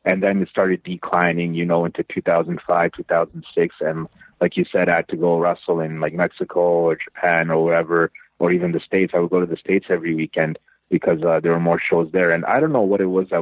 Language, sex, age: English, male, 30-49